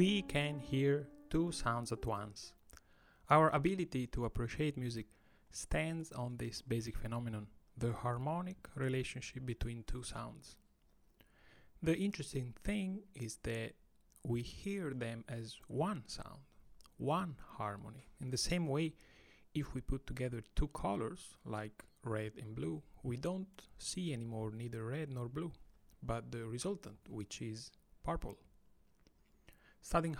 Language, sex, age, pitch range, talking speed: English, male, 30-49, 110-150 Hz, 130 wpm